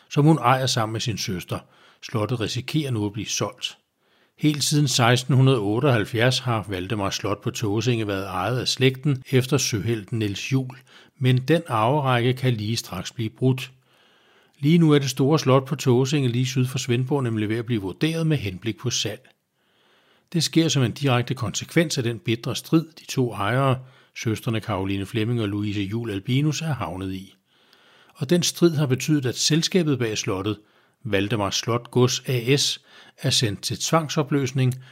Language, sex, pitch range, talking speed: Danish, male, 110-140 Hz, 170 wpm